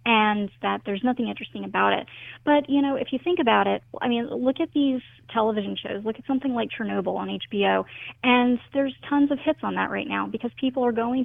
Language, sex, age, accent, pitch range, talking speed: English, female, 30-49, American, 200-240 Hz, 225 wpm